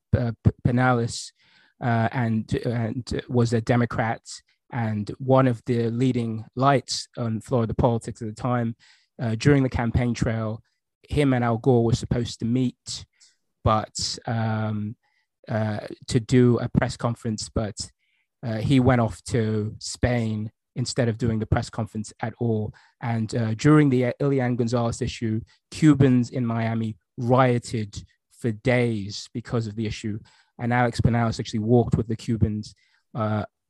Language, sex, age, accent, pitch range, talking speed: English, male, 20-39, British, 110-125 Hz, 145 wpm